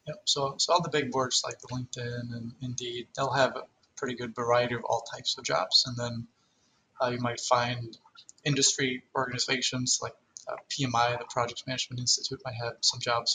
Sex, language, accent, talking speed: male, English, American, 185 wpm